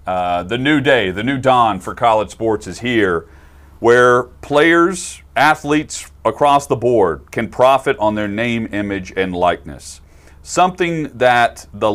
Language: English